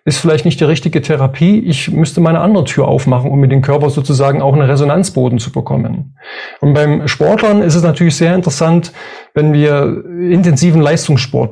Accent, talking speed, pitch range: German, 175 wpm, 135-165 Hz